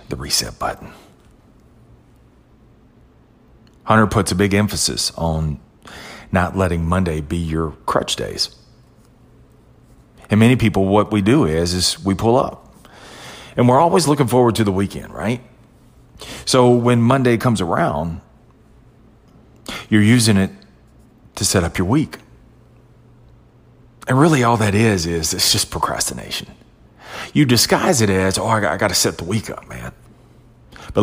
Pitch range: 95-120 Hz